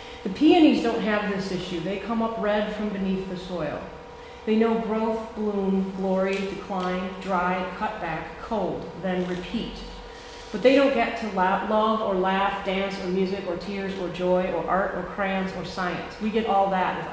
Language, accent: English, American